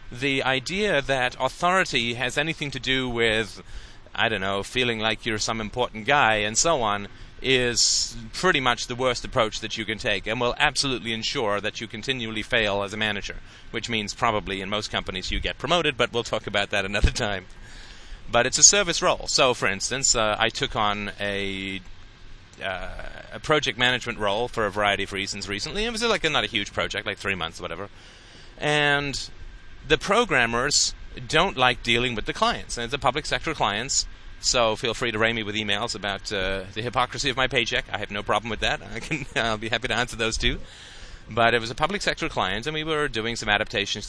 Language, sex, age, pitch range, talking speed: English, male, 30-49, 100-130 Hz, 210 wpm